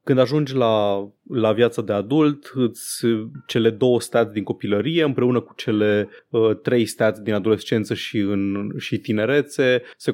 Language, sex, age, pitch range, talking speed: Romanian, male, 20-39, 105-120 Hz, 155 wpm